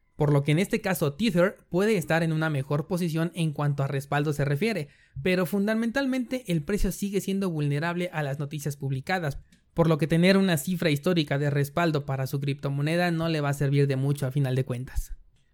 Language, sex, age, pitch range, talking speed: Spanish, male, 20-39, 145-185 Hz, 205 wpm